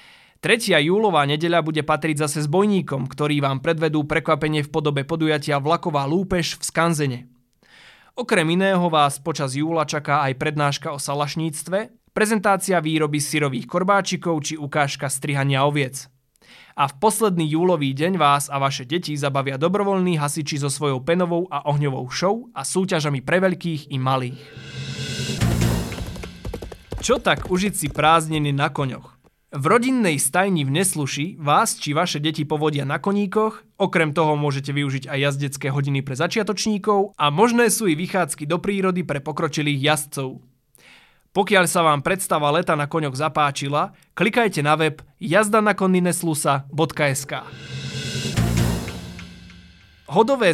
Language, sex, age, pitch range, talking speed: Slovak, male, 20-39, 140-180 Hz, 130 wpm